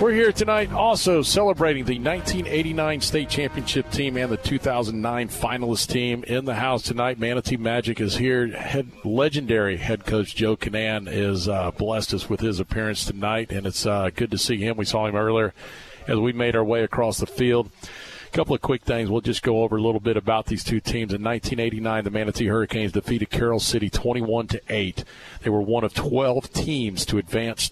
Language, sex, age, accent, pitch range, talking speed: English, male, 40-59, American, 105-125 Hz, 190 wpm